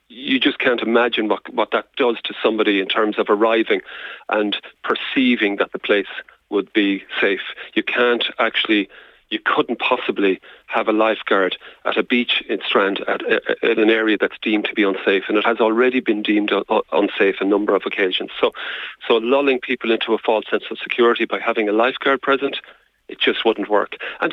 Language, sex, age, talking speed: English, male, 40-59, 190 wpm